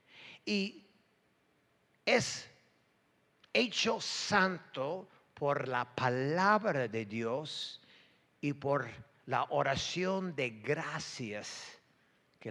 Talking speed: 75 wpm